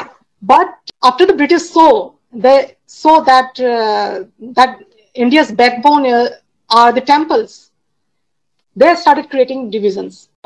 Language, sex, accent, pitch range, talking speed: Hindi, female, native, 235-285 Hz, 115 wpm